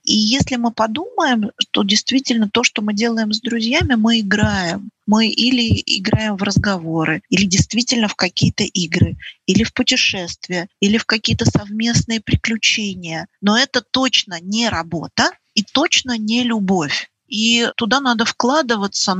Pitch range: 185-235 Hz